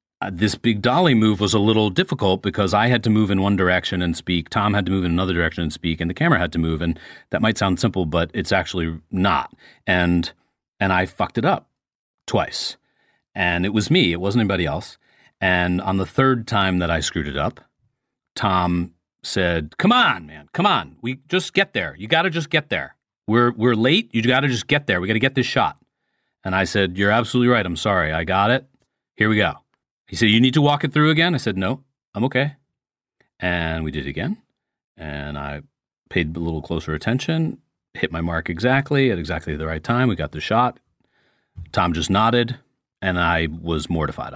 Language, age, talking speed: English, 40-59, 215 wpm